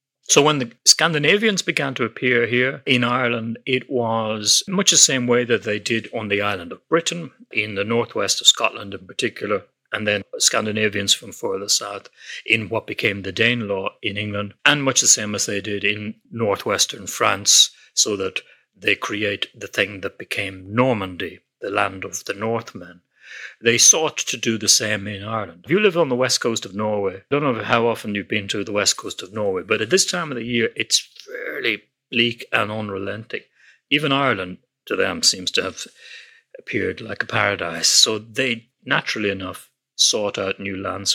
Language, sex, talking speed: English, male, 190 wpm